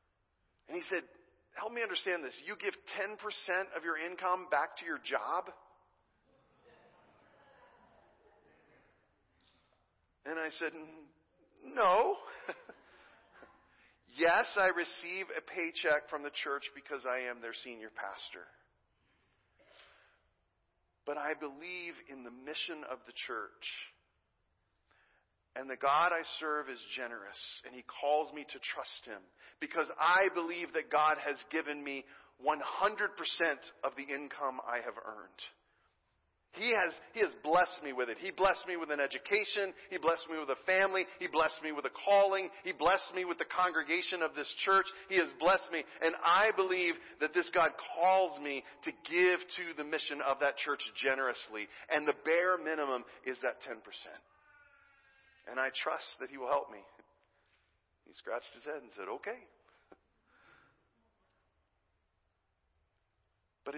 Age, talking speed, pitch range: 40-59, 145 wpm, 140-185 Hz